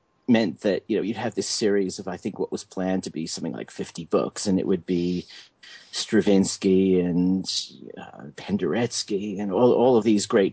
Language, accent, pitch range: English, American, 85-105 Hz